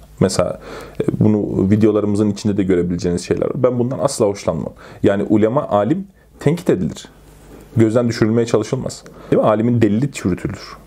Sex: male